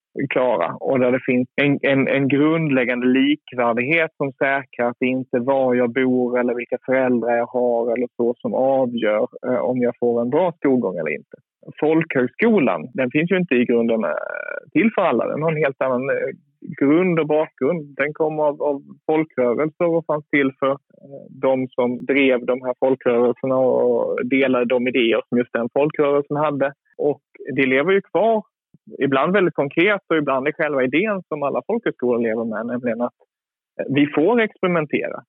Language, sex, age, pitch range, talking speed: Swedish, male, 30-49, 125-155 Hz, 175 wpm